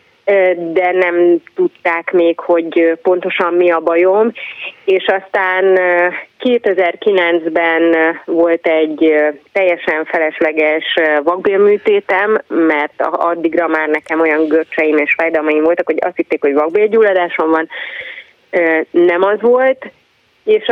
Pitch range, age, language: 165-205 Hz, 30-49, Hungarian